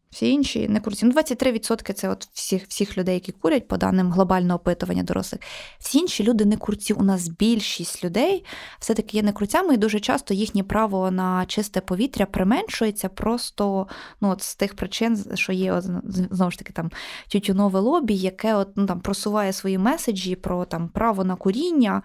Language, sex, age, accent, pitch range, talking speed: Ukrainian, female, 20-39, native, 190-225 Hz, 180 wpm